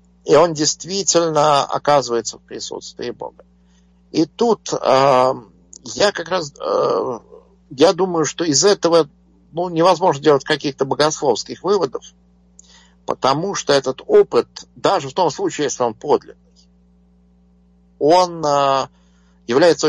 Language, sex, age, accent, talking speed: Russian, male, 50-69, native, 120 wpm